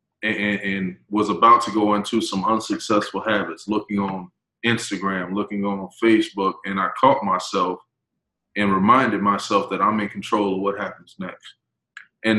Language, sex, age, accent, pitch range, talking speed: English, male, 20-39, American, 105-120 Hz, 155 wpm